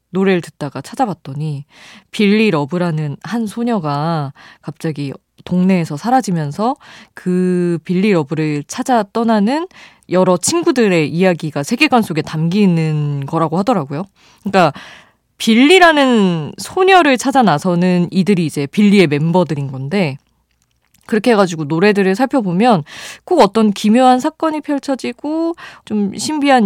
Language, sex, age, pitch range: Korean, female, 20-39, 155-225 Hz